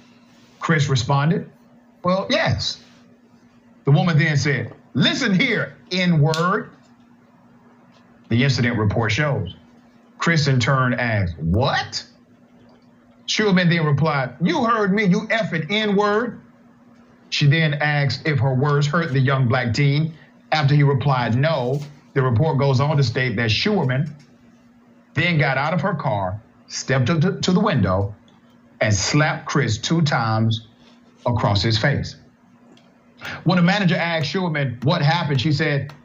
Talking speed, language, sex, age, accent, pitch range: 135 wpm, English, male, 50-69, American, 130-175 Hz